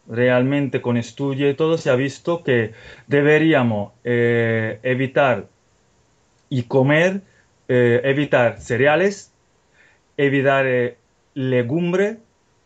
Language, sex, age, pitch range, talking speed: Spanish, male, 30-49, 120-150 Hz, 95 wpm